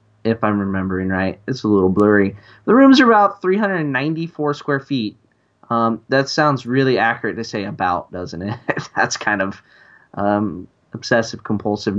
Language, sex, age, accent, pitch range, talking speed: English, male, 20-39, American, 105-140 Hz, 150 wpm